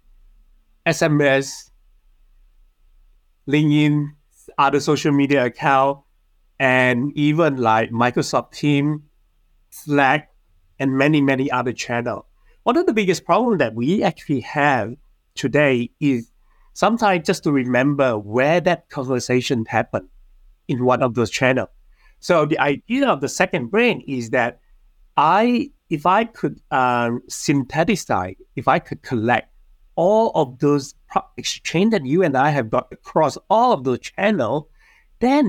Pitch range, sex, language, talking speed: 110-150 Hz, male, English, 130 wpm